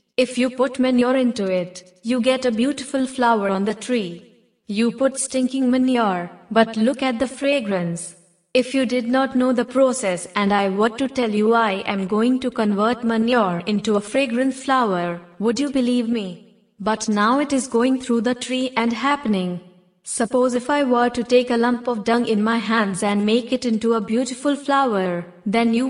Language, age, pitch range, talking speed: English, 20-39, 205-255 Hz, 190 wpm